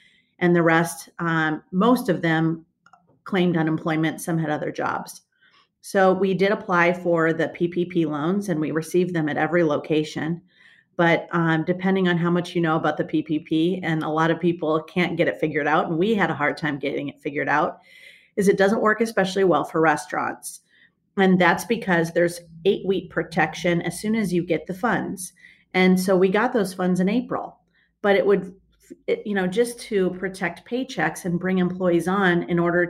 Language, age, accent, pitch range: English, 40-59, American, 165-195 Hz